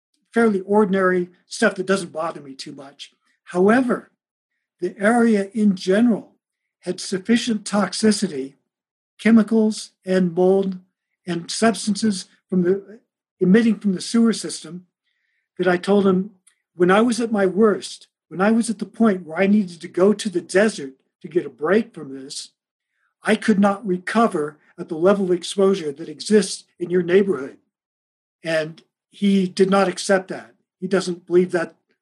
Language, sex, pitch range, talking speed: English, male, 175-210 Hz, 155 wpm